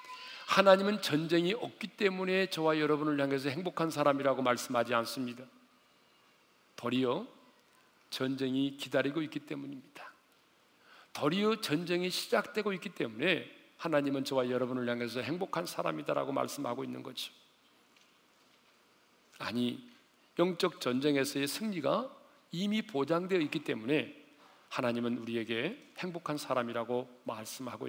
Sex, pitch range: male, 125-195 Hz